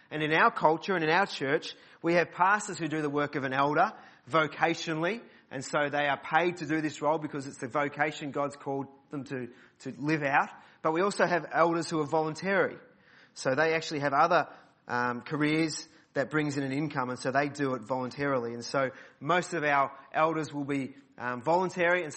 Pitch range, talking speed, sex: 135-160 Hz, 205 wpm, male